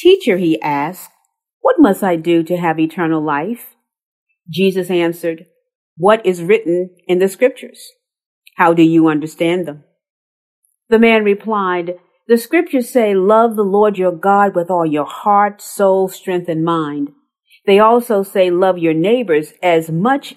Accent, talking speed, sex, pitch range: American, 150 wpm, female, 170-230 Hz